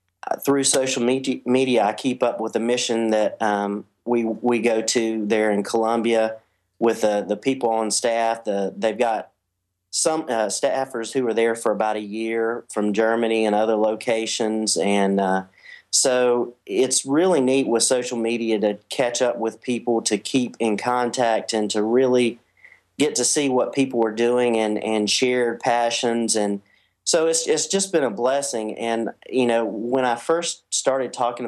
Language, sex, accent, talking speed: English, male, American, 175 wpm